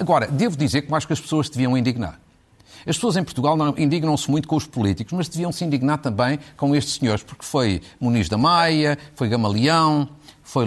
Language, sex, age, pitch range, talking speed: Portuguese, male, 50-69, 125-195 Hz, 210 wpm